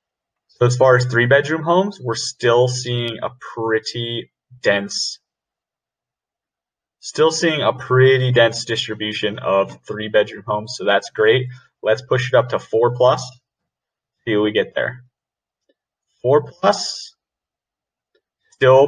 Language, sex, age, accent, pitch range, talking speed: English, male, 30-49, American, 110-130 Hz, 130 wpm